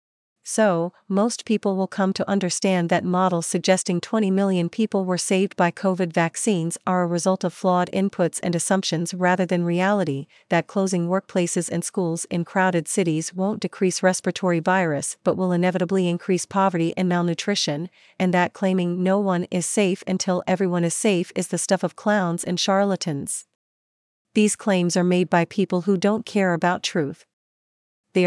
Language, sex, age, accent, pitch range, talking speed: English, female, 40-59, American, 175-195 Hz, 165 wpm